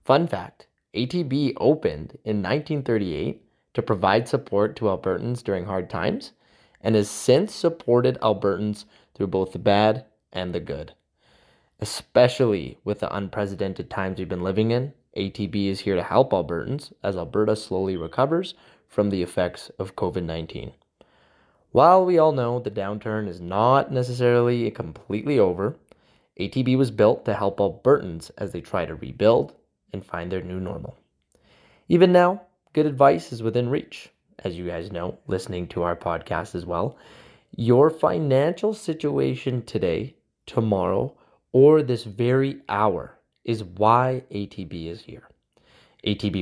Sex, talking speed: male, 140 wpm